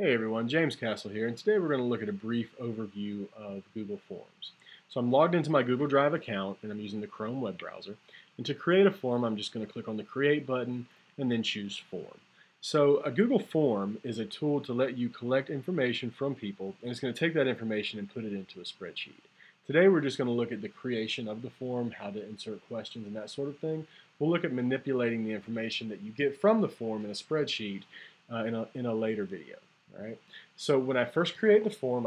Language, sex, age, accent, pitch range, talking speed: English, male, 30-49, American, 110-145 Hz, 240 wpm